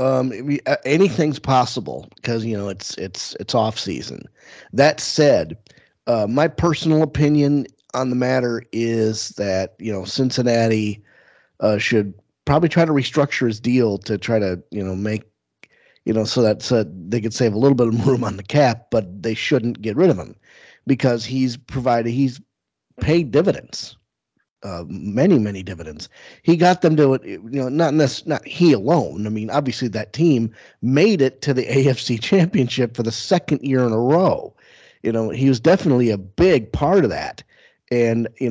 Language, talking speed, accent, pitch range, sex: English, 180 wpm, American, 110-140 Hz, male